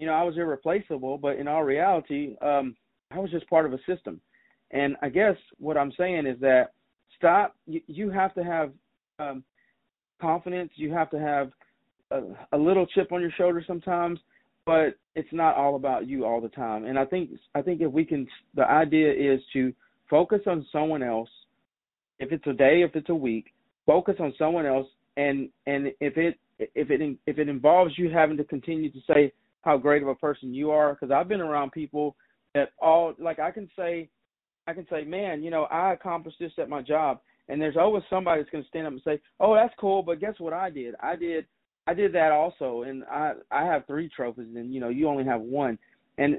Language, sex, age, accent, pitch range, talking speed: English, male, 40-59, American, 140-170 Hz, 215 wpm